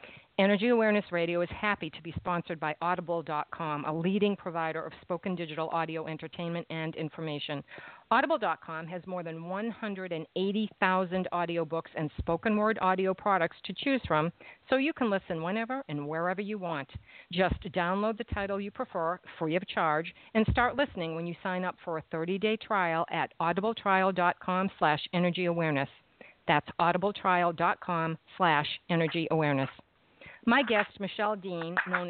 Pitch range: 165-205 Hz